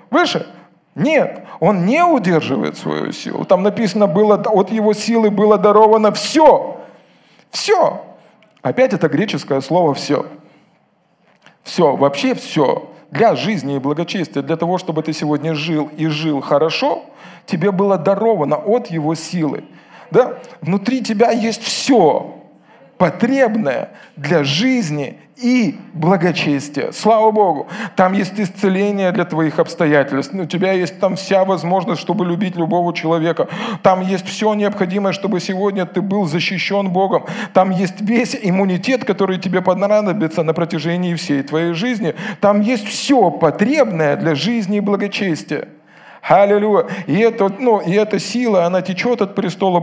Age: 40-59